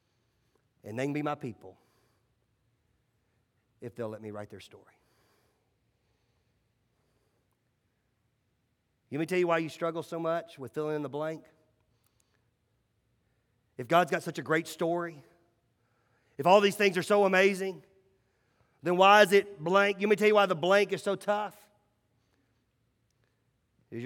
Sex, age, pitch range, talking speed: male, 40-59, 120-190 Hz, 140 wpm